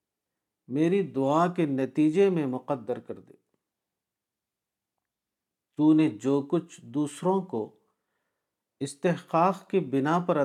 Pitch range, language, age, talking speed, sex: 120-160 Hz, Urdu, 50-69, 105 wpm, male